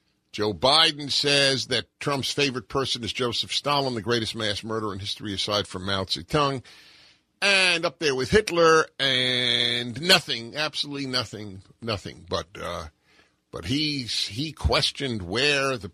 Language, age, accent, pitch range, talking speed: English, 50-69, American, 100-140 Hz, 145 wpm